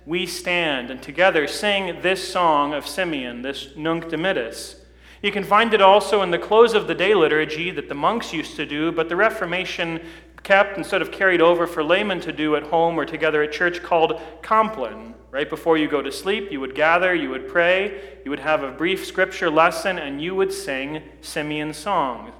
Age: 40-59